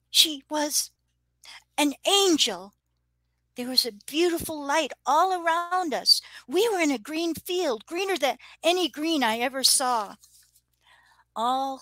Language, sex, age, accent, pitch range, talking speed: English, female, 50-69, American, 210-335 Hz, 130 wpm